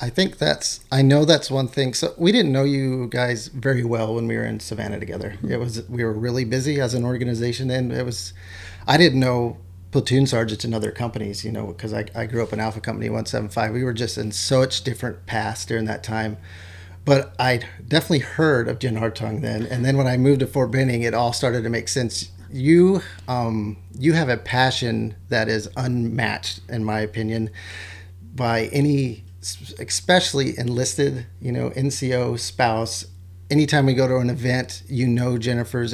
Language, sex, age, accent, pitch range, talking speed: English, male, 30-49, American, 110-135 Hz, 190 wpm